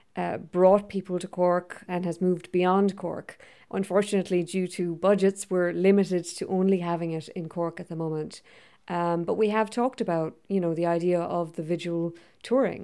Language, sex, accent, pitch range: English, female, Irish, 170-190 Hz